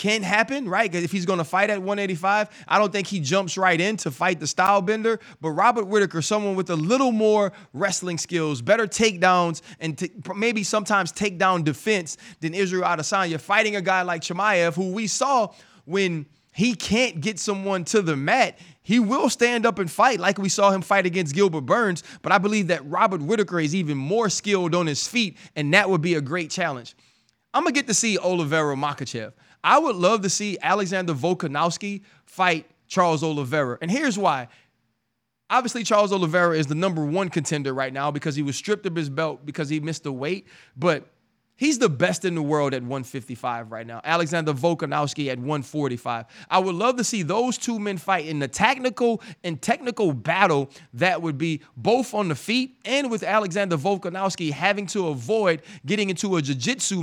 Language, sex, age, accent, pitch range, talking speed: English, male, 20-39, American, 155-205 Hz, 195 wpm